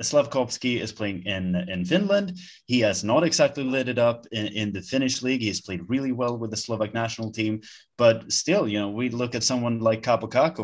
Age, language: 20-39, English